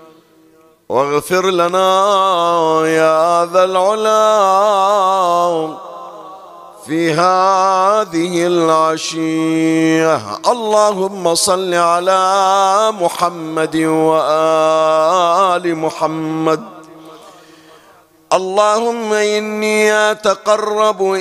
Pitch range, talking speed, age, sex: 160-195 Hz, 50 wpm, 50-69, male